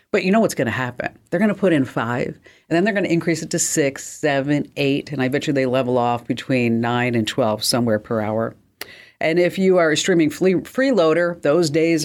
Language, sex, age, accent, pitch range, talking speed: English, female, 50-69, American, 130-175 Hz, 240 wpm